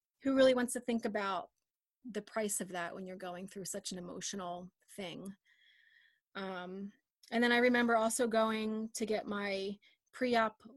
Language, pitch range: English, 205-250 Hz